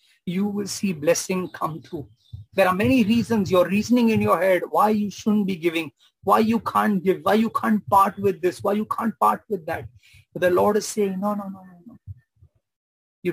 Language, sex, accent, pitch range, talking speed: English, male, Indian, 125-200 Hz, 205 wpm